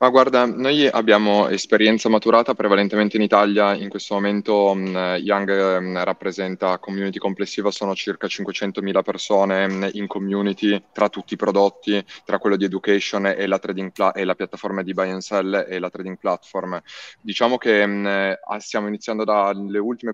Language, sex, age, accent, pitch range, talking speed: Italian, male, 20-39, native, 95-105 Hz, 160 wpm